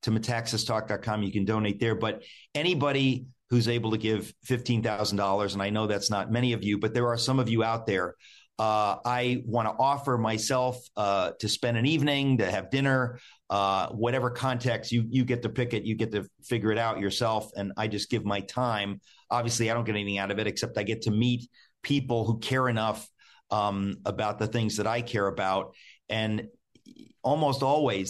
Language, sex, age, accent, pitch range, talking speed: English, male, 50-69, American, 105-120 Hz, 200 wpm